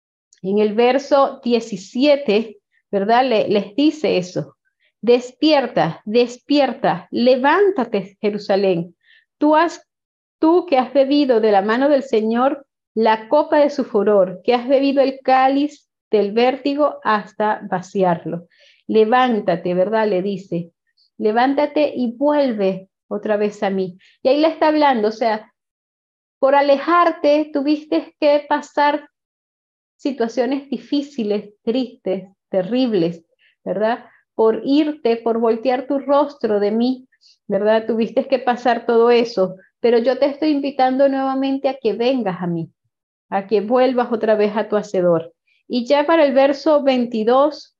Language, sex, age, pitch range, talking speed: Spanish, female, 30-49, 210-280 Hz, 130 wpm